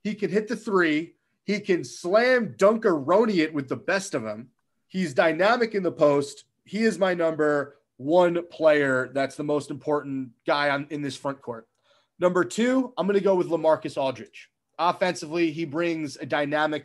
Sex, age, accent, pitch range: male, 30-49, American, 145-180 Hz